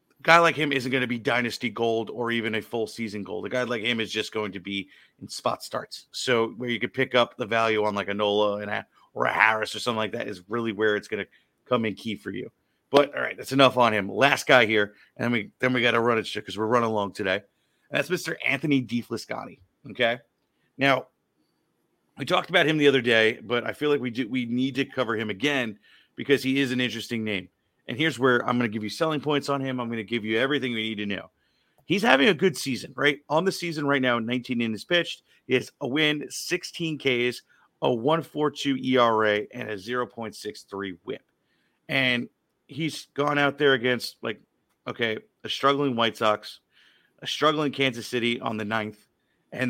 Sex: male